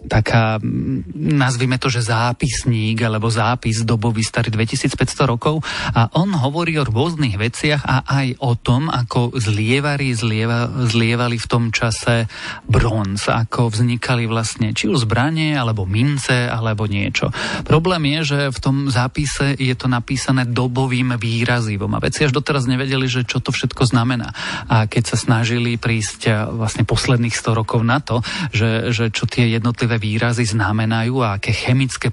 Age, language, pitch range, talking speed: 40-59, Slovak, 115-130 Hz, 150 wpm